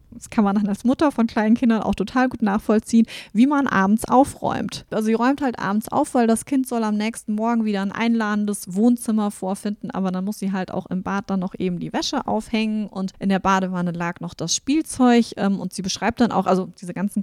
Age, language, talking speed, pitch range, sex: 20-39, German, 225 wpm, 195-240 Hz, female